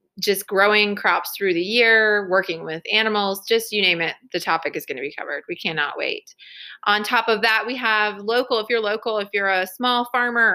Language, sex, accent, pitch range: English, female, American, 190-230 Hz